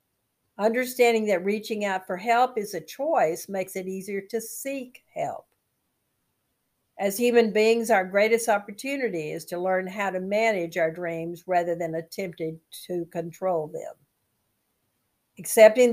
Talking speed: 135 wpm